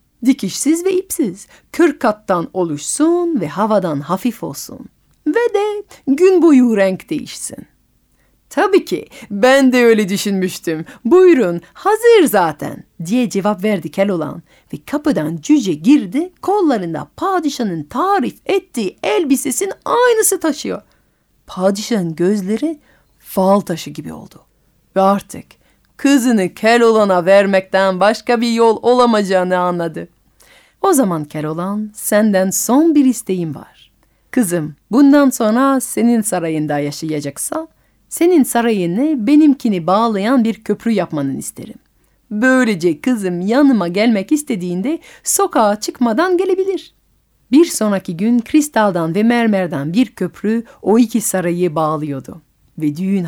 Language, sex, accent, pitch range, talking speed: Turkish, female, native, 185-280 Hz, 115 wpm